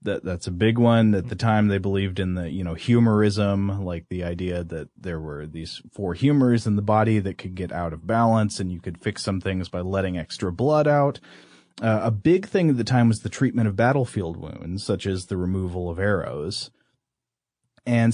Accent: American